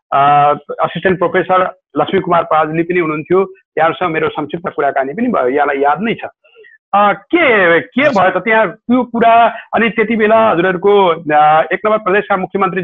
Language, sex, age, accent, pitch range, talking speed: English, male, 60-79, Indian, 160-190 Hz, 155 wpm